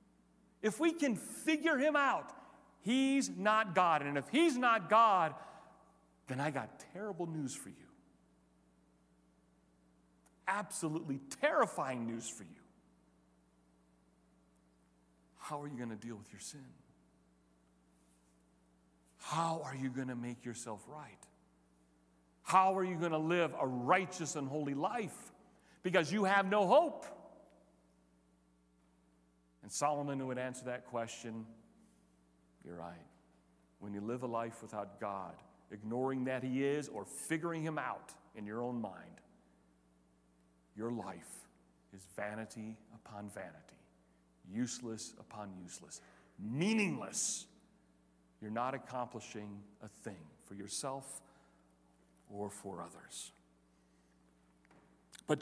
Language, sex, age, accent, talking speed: English, male, 40-59, American, 115 wpm